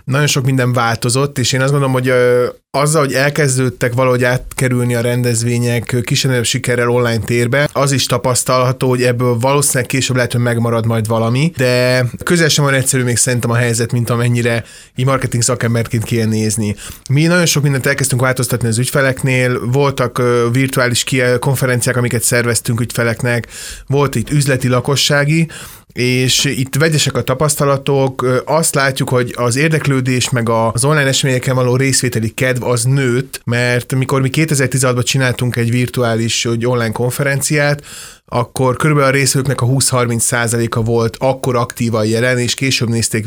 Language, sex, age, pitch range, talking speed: Hungarian, male, 20-39, 120-135 Hz, 145 wpm